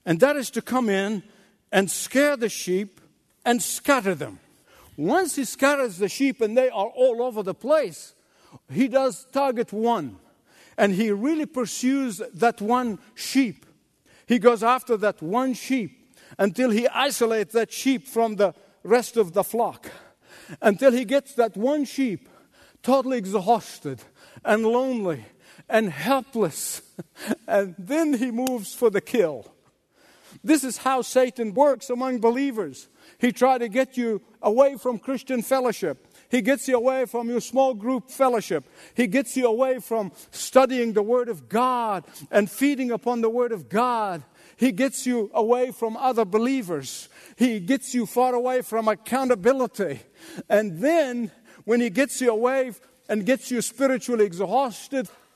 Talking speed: 150 wpm